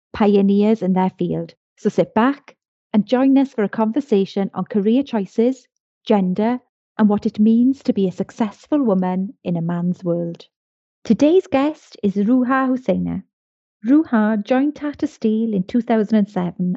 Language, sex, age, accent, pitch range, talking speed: English, female, 30-49, British, 190-235 Hz, 145 wpm